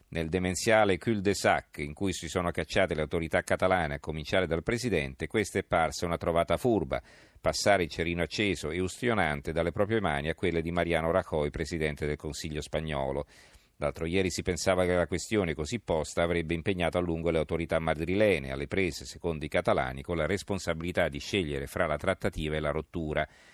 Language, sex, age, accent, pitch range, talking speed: Italian, male, 50-69, native, 80-95 Hz, 185 wpm